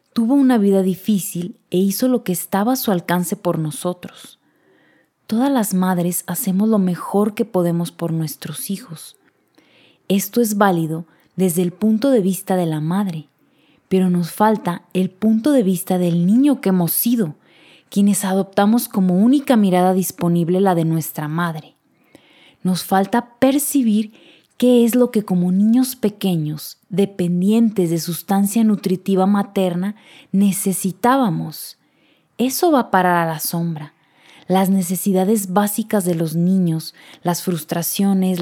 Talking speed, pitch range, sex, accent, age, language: 140 wpm, 175-210 Hz, female, Mexican, 20-39, Spanish